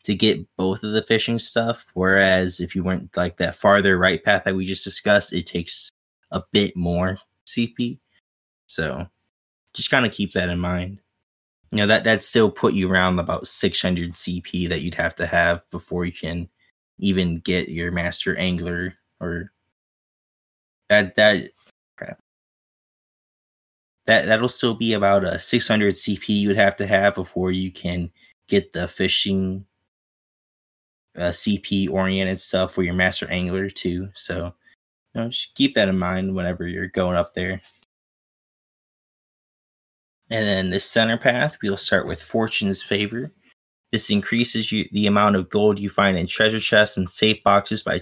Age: 20-39